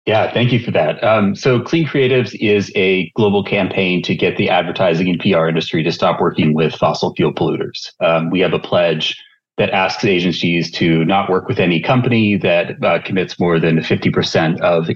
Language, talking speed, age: English, 195 wpm, 30-49